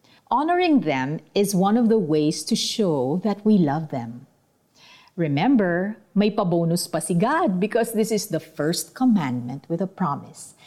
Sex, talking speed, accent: female, 155 wpm, native